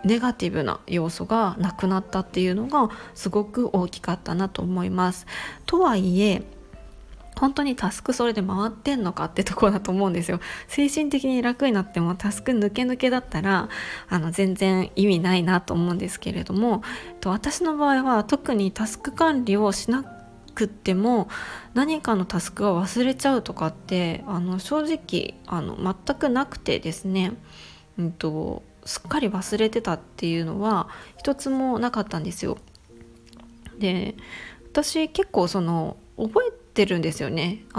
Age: 20-39